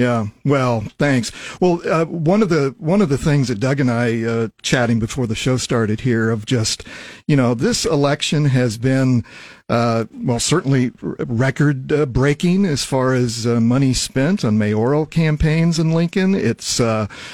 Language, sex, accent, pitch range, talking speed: English, male, American, 115-145 Hz, 170 wpm